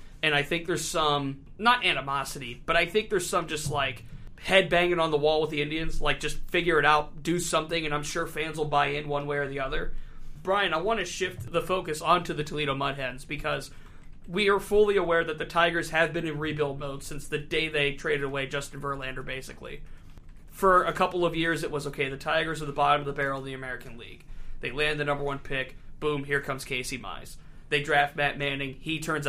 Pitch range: 140-170 Hz